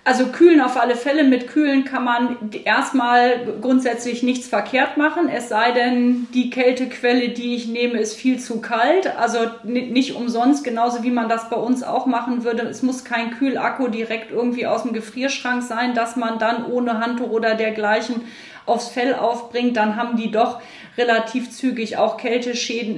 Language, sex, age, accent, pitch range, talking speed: German, female, 30-49, German, 215-245 Hz, 170 wpm